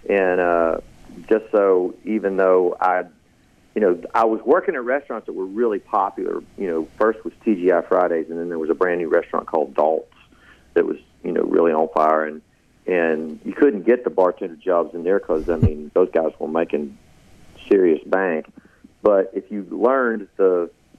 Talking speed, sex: 185 wpm, male